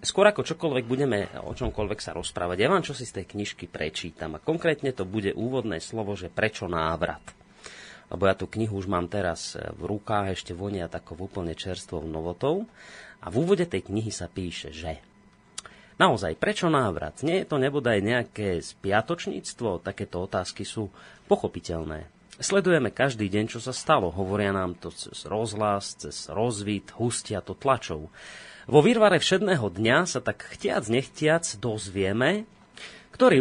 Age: 30-49